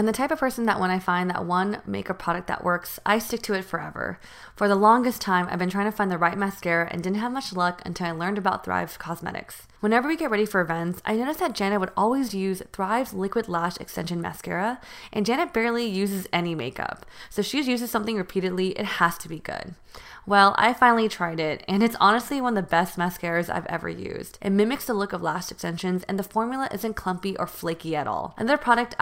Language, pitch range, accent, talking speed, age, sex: English, 180-225 Hz, American, 230 wpm, 20-39, female